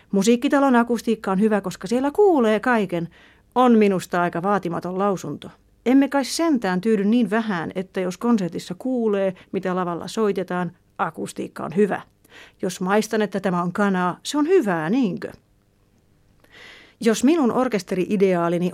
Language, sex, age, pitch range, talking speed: Finnish, female, 40-59, 185-225 Hz, 135 wpm